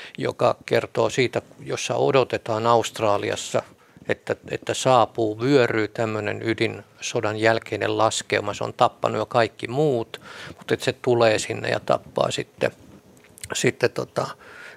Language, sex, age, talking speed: Finnish, male, 50-69, 120 wpm